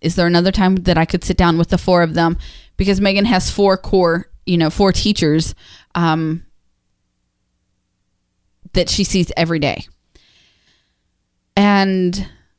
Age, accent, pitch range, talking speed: 20-39, American, 170-225 Hz, 145 wpm